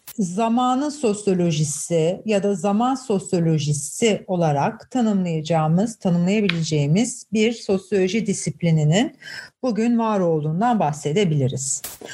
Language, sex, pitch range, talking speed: Turkish, female, 180-240 Hz, 80 wpm